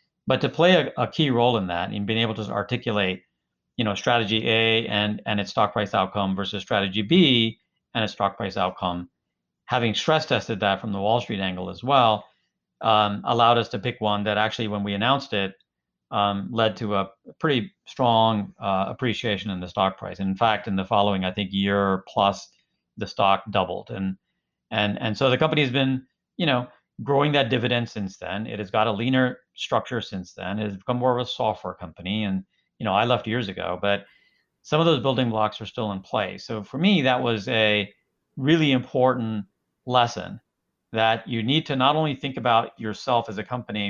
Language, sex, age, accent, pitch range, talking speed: English, male, 50-69, American, 100-125 Hz, 205 wpm